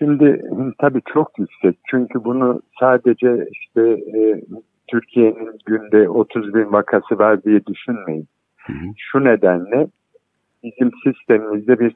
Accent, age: native, 60-79